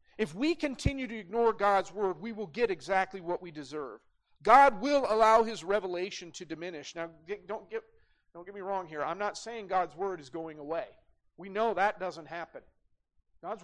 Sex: male